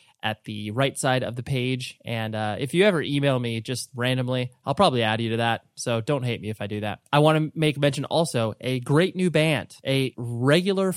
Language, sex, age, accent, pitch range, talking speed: English, male, 20-39, American, 115-150 Hz, 230 wpm